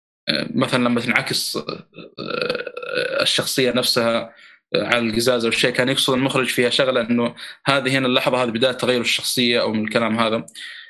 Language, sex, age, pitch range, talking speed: Arabic, male, 20-39, 115-140 Hz, 140 wpm